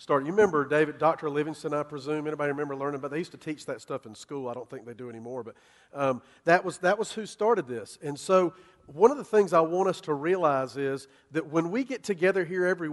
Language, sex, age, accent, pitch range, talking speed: English, male, 40-59, American, 140-185 Hz, 250 wpm